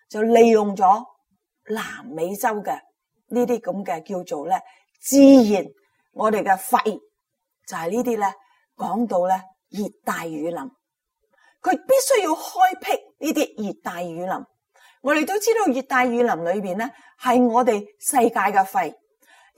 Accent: native